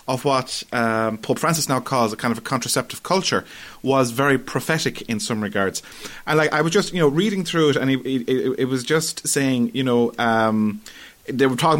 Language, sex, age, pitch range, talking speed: English, male, 30-49, 110-140 Hz, 215 wpm